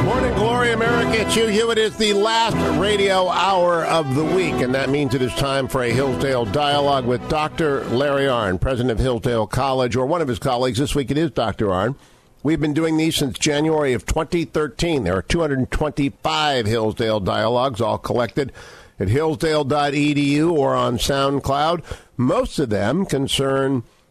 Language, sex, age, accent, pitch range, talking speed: English, male, 50-69, American, 115-155 Hz, 170 wpm